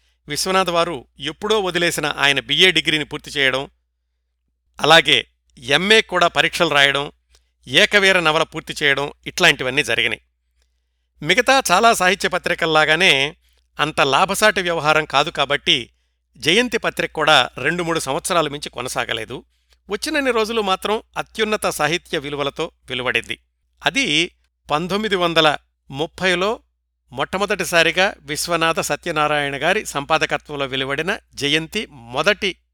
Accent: native